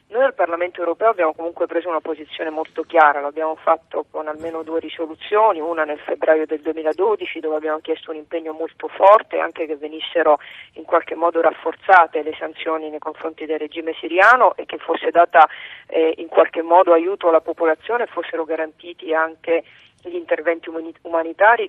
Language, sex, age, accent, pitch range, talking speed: Italian, female, 40-59, native, 155-175 Hz, 165 wpm